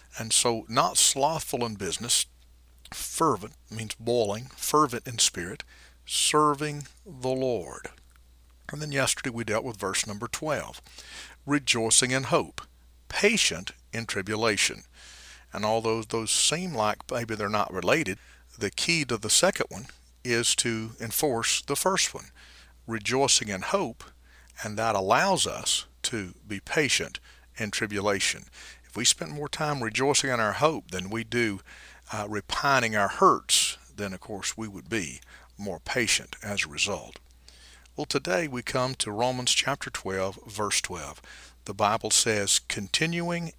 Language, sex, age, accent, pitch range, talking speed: English, male, 50-69, American, 95-135 Hz, 145 wpm